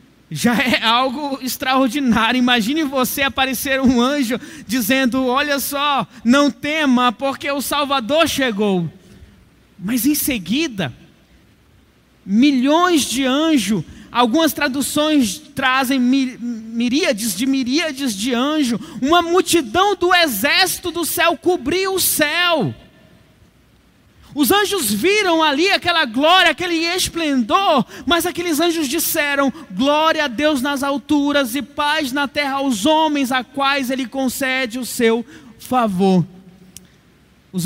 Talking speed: 115 wpm